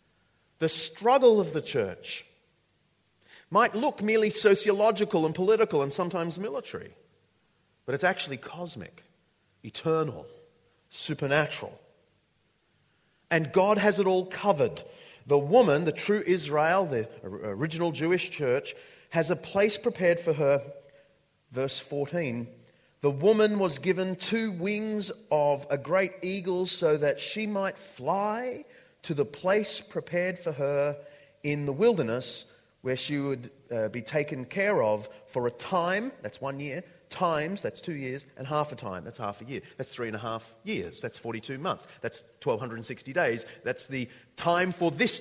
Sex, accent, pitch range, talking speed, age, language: male, Australian, 135-195 Hz, 145 wpm, 40-59, English